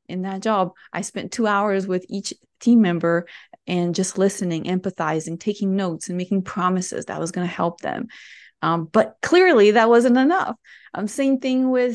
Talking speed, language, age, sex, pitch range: 185 wpm, English, 20-39, female, 180-220 Hz